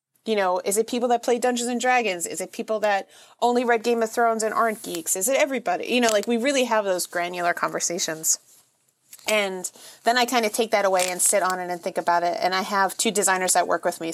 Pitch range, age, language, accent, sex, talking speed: 180-220 Hz, 30-49, English, American, female, 250 wpm